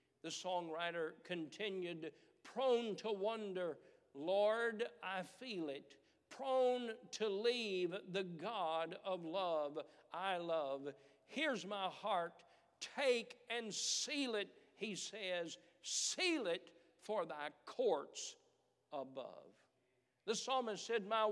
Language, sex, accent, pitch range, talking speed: English, male, American, 185-255 Hz, 105 wpm